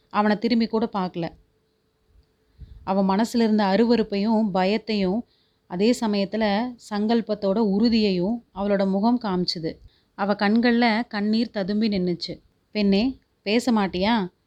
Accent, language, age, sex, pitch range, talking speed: native, Tamil, 30-49, female, 195-225 Hz, 100 wpm